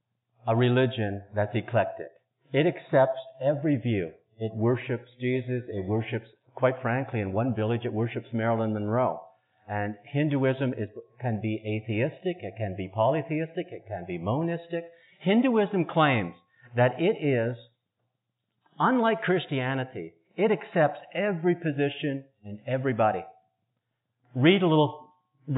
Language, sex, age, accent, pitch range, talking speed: English, male, 50-69, American, 110-150 Hz, 120 wpm